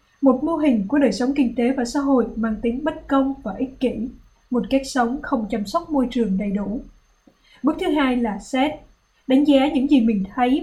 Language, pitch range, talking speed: Vietnamese, 235-275 Hz, 220 wpm